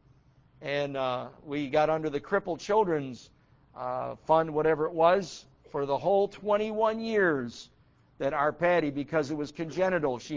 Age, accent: 60-79, American